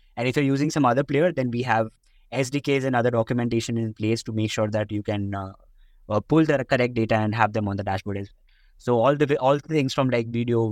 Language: English